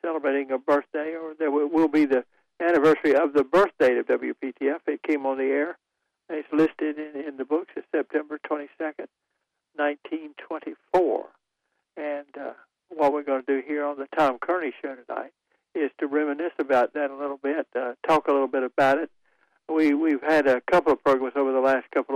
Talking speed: 185 wpm